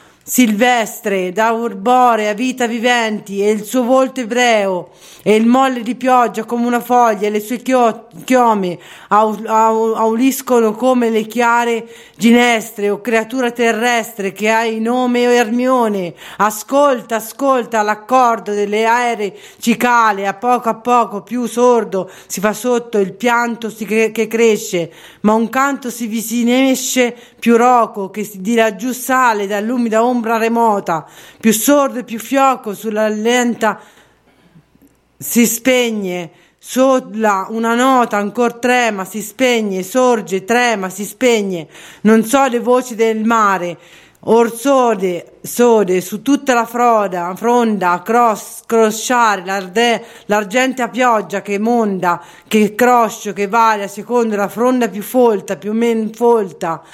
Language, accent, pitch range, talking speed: Italian, native, 210-245 Hz, 135 wpm